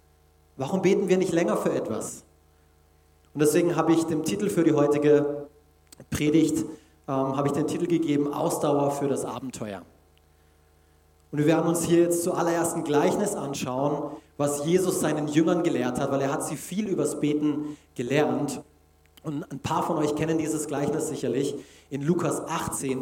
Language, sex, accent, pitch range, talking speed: German, male, German, 125-165 Hz, 165 wpm